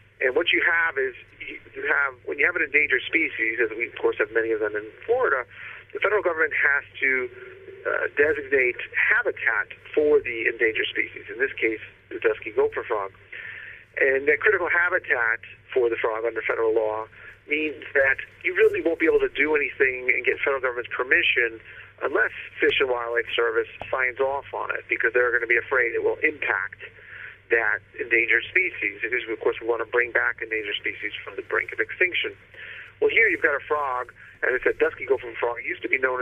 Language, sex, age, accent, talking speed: English, male, 40-59, American, 200 wpm